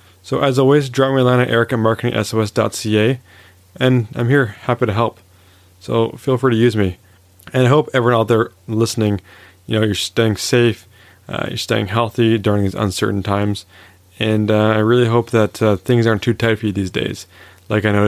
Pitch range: 95-115 Hz